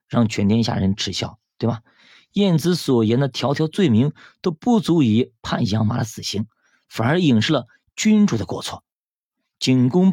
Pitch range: 105-150 Hz